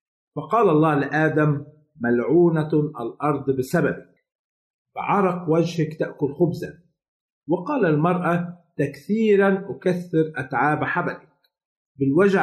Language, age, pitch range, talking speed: Arabic, 50-69, 140-175 Hz, 80 wpm